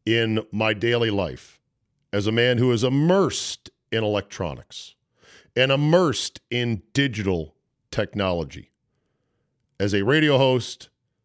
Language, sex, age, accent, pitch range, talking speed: English, male, 50-69, American, 100-130 Hz, 110 wpm